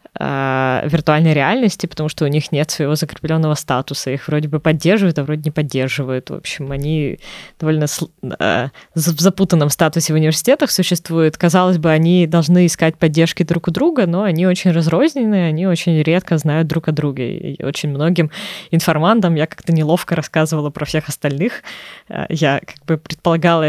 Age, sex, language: 20-39, female, Russian